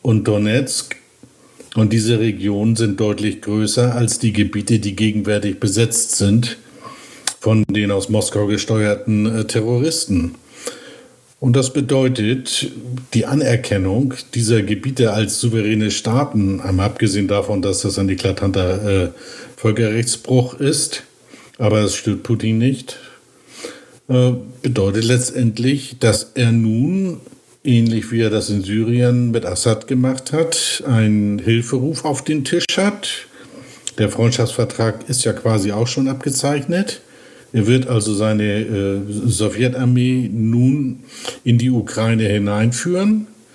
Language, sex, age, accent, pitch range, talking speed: German, male, 50-69, German, 105-125 Hz, 115 wpm